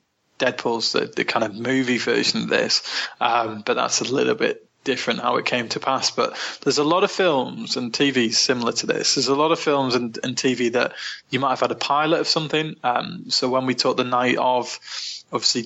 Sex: male